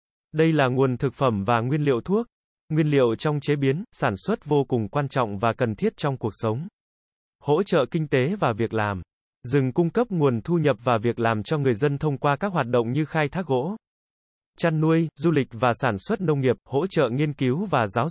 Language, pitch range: Vietnamese, 115-155 Hz